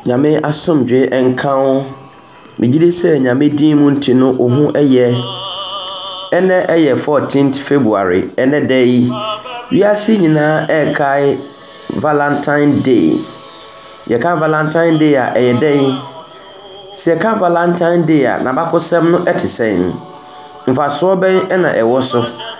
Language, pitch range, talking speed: English, 130-180 Hz, 105 wpm